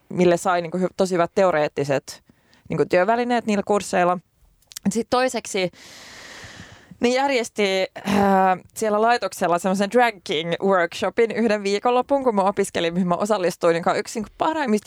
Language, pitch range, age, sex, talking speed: Finnish, 175-215 Hz, 20-39, female, 135 wpm